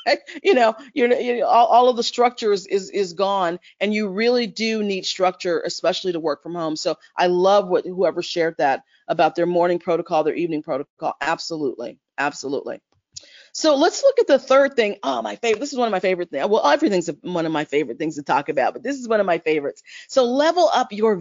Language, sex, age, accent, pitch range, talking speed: English, female, 40-59, American, 175-235 Hz, 225 wpm